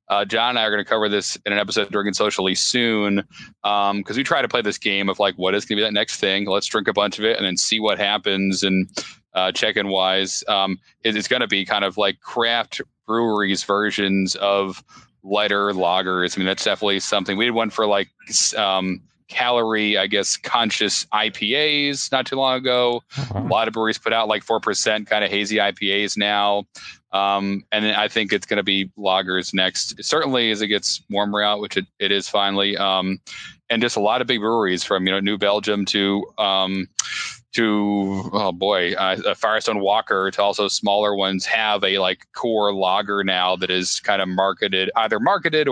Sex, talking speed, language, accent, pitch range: male, 205 wpm, English, American, 95-110 Hz